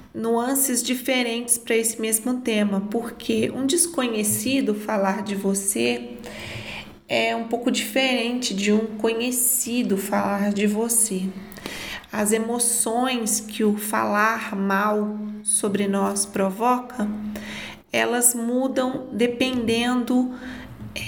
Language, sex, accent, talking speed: Portuguese, female, Brazilian, 95 wpm